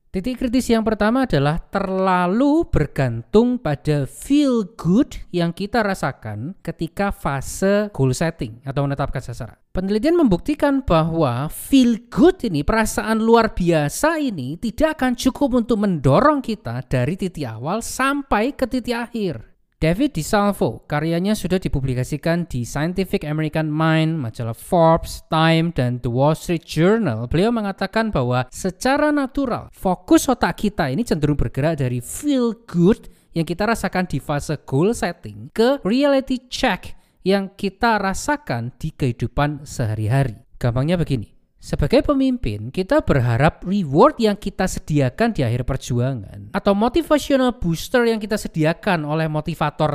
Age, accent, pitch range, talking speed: 20-39, native, 140-220 Hz, 135 wpm